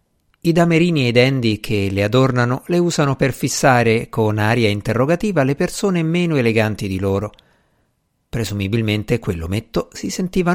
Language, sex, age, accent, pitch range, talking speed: Italian, male, 50-69, native, 110-170 Hz, 140 wpm